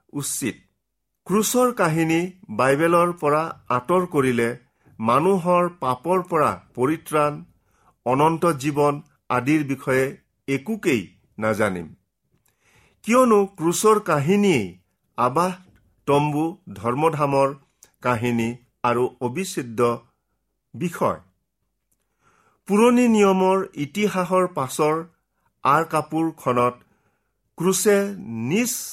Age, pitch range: 50-69, 130-175 Hz